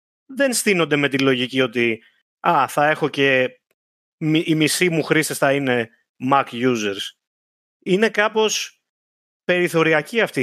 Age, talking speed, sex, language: 30-49, 125 wpm, male, Greek